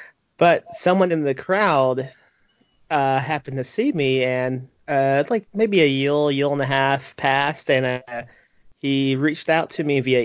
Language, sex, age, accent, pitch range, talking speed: English, male, 30-49, American, 130-150 Hz, 170 wpm